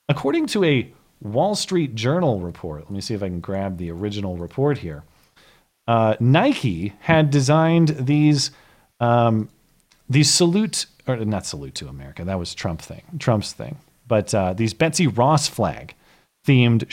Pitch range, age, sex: 110-160 Hz, 40-59, male